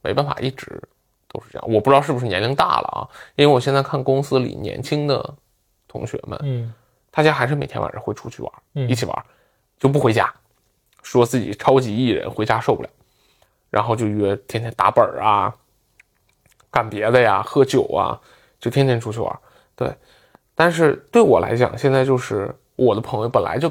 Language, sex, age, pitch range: Chinese, male, 20-39, 110-135 Hz